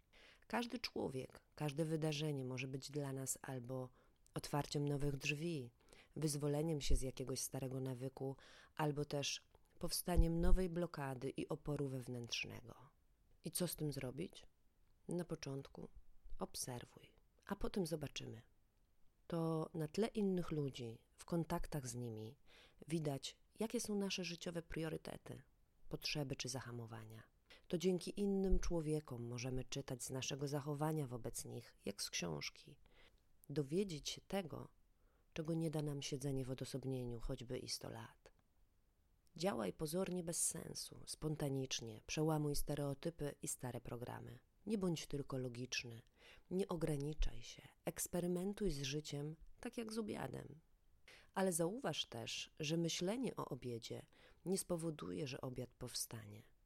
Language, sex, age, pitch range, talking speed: Polish, female, 30-49, 130-165 Hz, 125 wpm